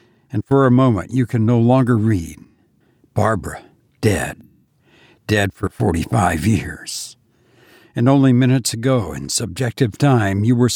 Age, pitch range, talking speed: 60-79, 115-135 Hz, 135 wpm